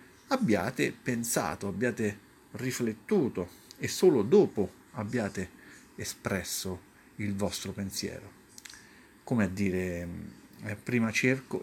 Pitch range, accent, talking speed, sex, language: 100-130 Hz, native, 95 wpm, male, Italian